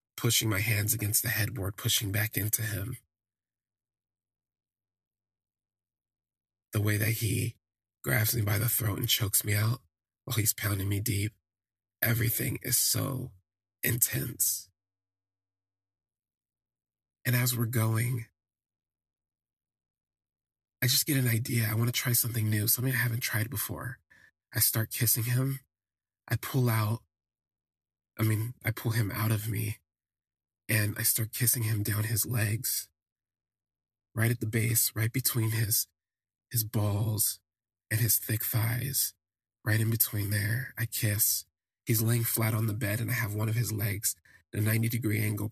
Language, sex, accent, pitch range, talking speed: English, male, American, 95-115 Hz, 150 wpm